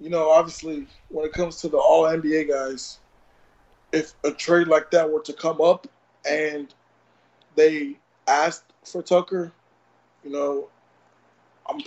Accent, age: American, 20-39